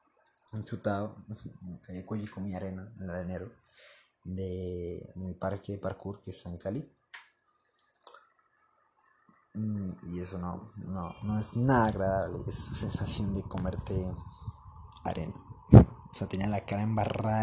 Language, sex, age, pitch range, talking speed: Spanish, male, 30-49, 95-125 Hz, 135 wpm